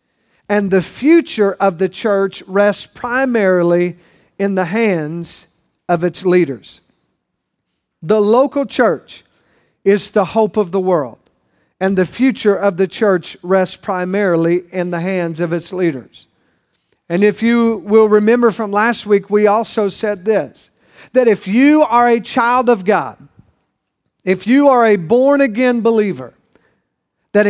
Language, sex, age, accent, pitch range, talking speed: English, male, 50-69, American, 185-235 Hz, 140 wpm